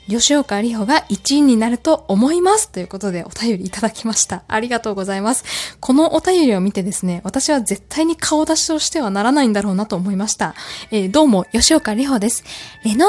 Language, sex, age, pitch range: Japanese, female, 20-39, 205-315 Hz